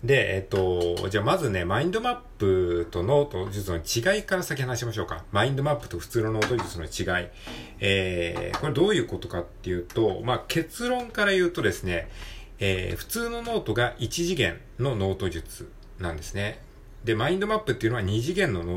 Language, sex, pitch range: Japanese, male, 90-140 Hz